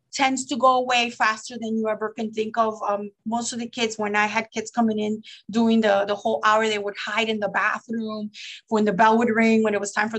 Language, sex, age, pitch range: English, female, 30-49, 220-270 Hz